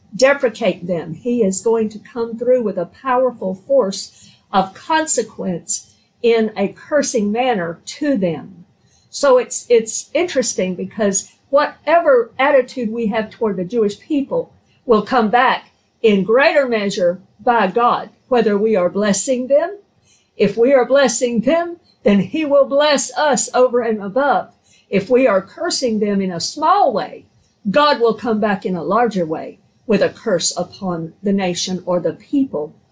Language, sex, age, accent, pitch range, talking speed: English, female, 50-69, American, 195-270 Hz, 155 wpm